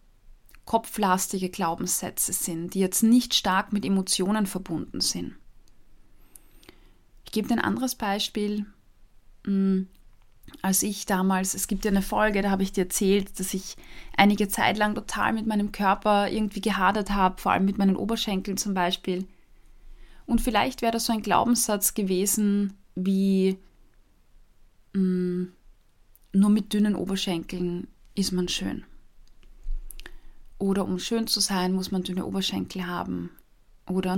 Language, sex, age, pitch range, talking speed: German, female, 20-39, 190-225 Hz, 135 wpm